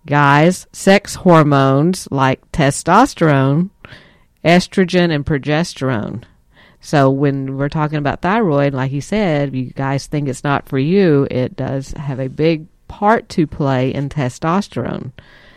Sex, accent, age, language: female, American, 50-69, English